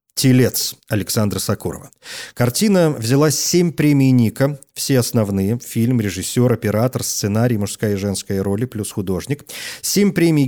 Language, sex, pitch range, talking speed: Russian, male, 115-155 Hz, 125 wpm